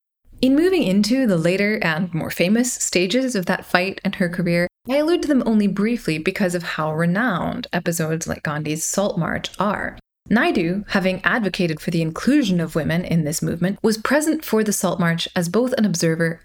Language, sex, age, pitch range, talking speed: English, female, 20-39, 170-225 Hz, 190 wpm